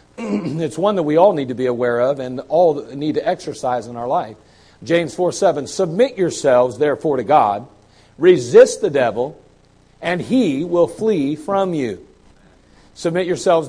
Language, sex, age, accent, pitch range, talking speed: English, male, 50-69, American, 155-210 Hz, 160 wpm